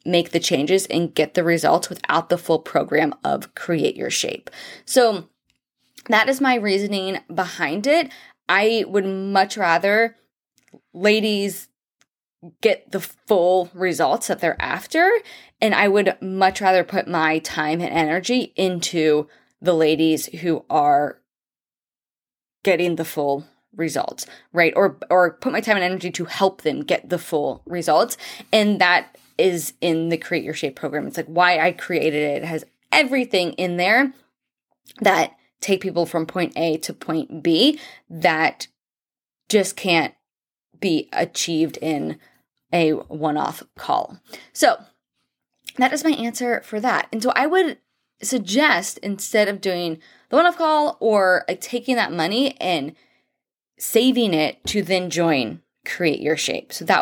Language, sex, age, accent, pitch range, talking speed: English, female, 20-39, American, 165-225 Hz, 145 wpm